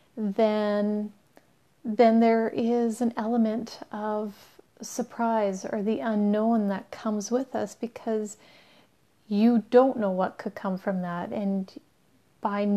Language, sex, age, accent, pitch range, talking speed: English, female, 30-49, American, 195-225 Hz, 120 wpm